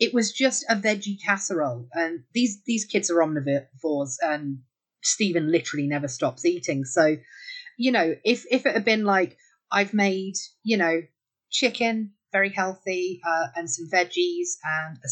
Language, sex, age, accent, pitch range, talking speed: English, female, 30-49, British, 170-225 Hz, 160 wpm